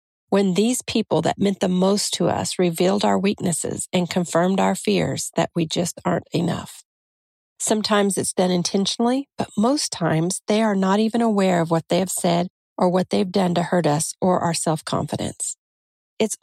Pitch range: 175-220 Hz